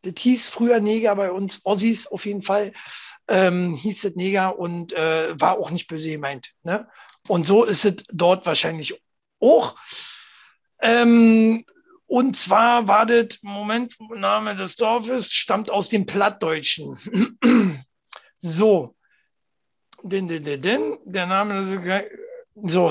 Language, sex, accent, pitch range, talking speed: German, male, German, 175-225 Hz, 115 wpm